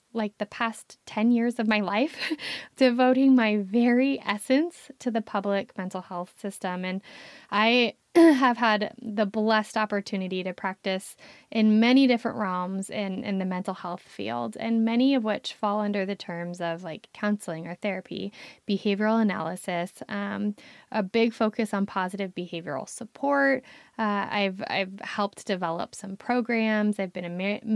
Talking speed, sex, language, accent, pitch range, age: 155 wpm, female, English, American, 200-250 Hz, 10-29